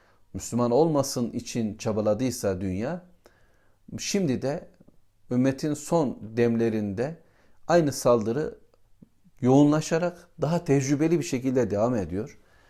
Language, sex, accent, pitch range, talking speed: Turkish, male, native, 105-135 Hz, 90 wpm